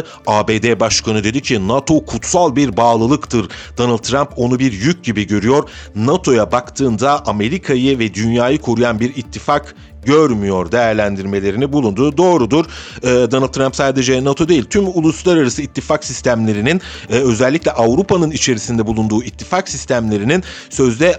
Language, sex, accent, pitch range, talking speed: Turkish, male, native, 115-155 Hz, 125 wpm